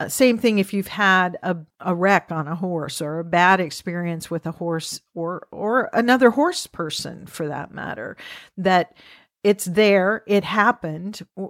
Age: 50-69